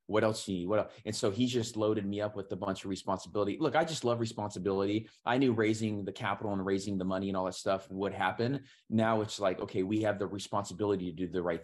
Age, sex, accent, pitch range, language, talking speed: 20-39, male, American, 95-110 Hz, English, 265 wpm